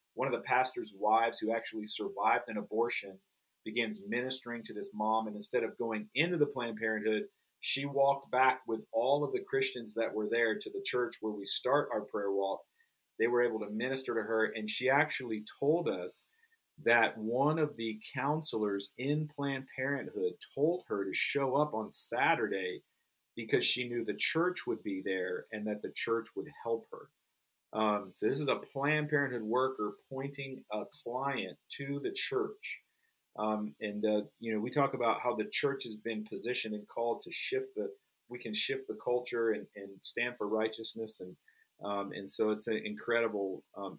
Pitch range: 110-140 Hz